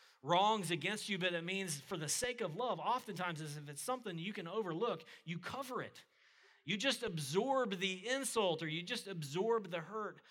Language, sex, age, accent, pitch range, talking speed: English, male, 40-59, American, 130-175 Hz, 190 wpm